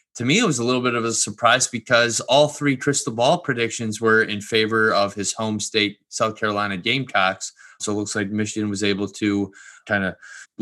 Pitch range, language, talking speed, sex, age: 105-120 Hz, English, 205 wpm, male, 20-39